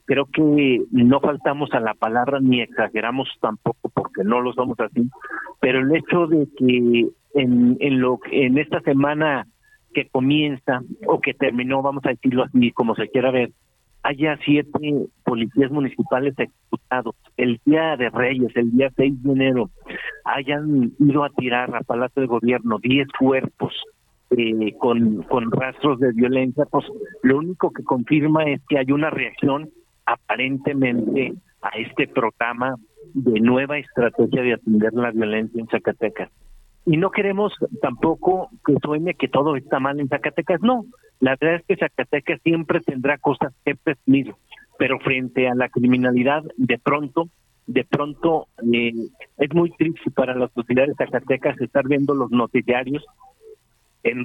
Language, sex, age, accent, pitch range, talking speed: Spanish, male, 50-69, Mexican, 125-150 Hz, 150 wpm